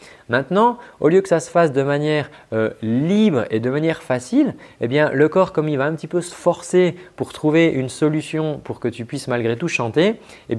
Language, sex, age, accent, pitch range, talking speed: French, male, 30-49, French, 130-165 Hz, 220 wpm